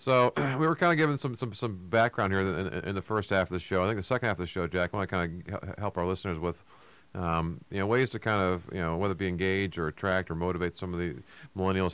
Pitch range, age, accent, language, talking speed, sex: 90-110 Hz, 40-59, American, English, 295 wpm, male